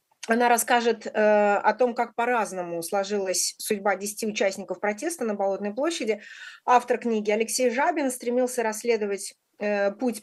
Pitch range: 195-230 Hz